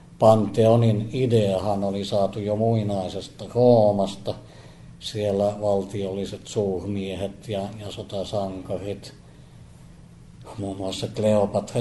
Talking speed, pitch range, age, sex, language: 80 wpm, 100-110 Hz, 60-79, male, Finnish